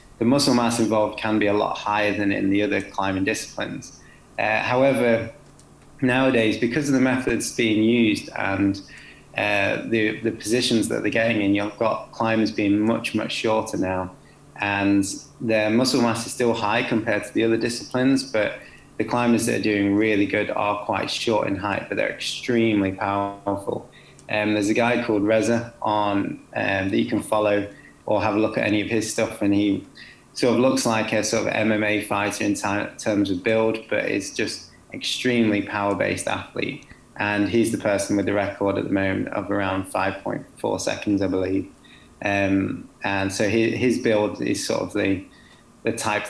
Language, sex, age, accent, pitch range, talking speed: English, male, 20-39, British, 100-115 Hz, 185 wpm